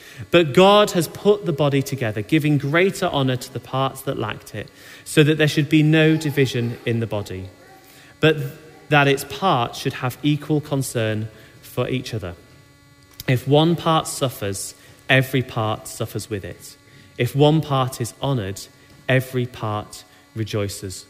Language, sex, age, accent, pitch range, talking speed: English, male, 30-49, British, 120-160 Hz, 155 wpm